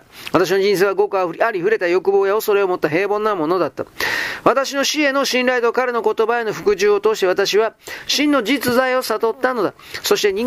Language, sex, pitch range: Japanese, male, 210-320 Hz